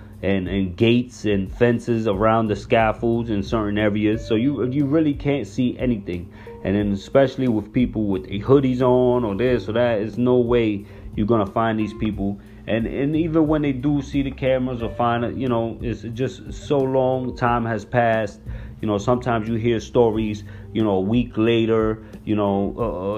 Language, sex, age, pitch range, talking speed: English, male, 30-49, 105-130 Hz, 190 wpm